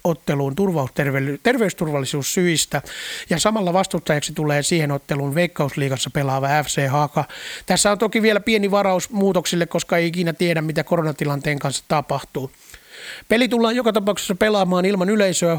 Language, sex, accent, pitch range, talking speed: Finnish, male, native, 150-185 Hz, 135 wpm